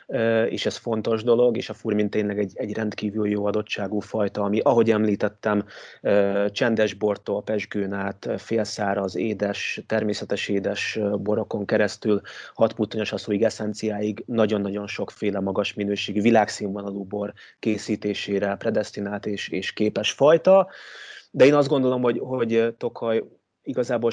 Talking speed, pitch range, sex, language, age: 125 wpm, 100-110 Hz, male, Hungarian, 30-49